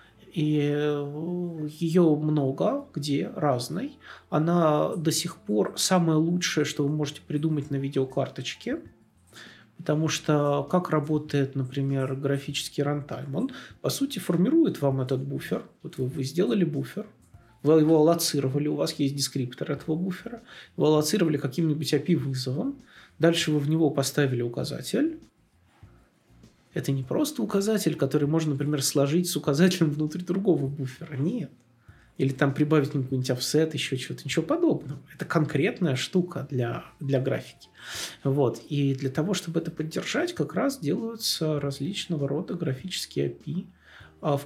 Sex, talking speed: male, 135 wpm